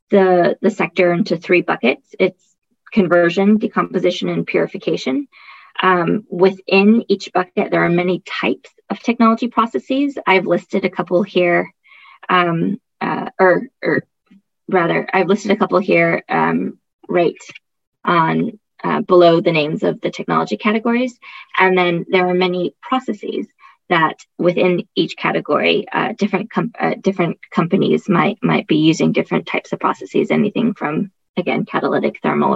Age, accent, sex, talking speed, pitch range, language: 20-39, American, female, 140 wpm, 175-210 Hz, English